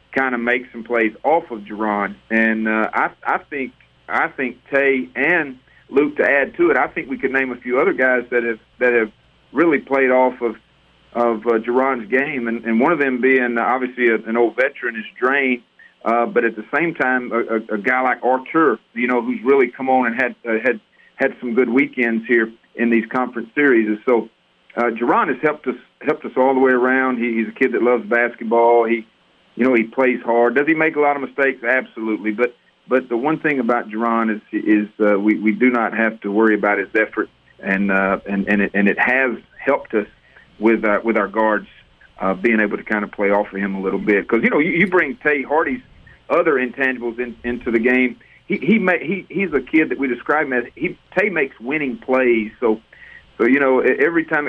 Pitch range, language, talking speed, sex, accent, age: 110-130 Hz, English, 225 wpm, male, American, 40-59